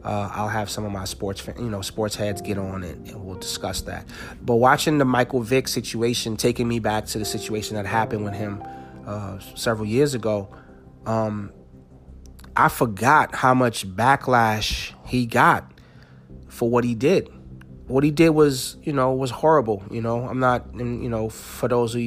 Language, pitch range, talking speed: English, 105-125 Hz, 185 wpm